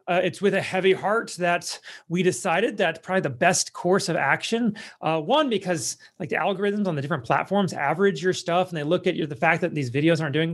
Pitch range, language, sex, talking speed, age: 155-190 Hz, English, male, 230 wpm, 30-49